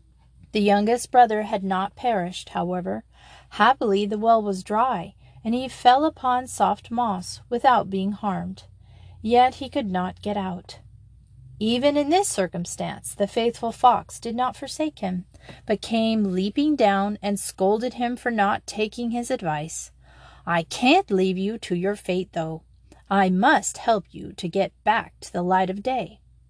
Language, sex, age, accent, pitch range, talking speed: English, female, 30-49, American, 180-250 Hz, 160 wpm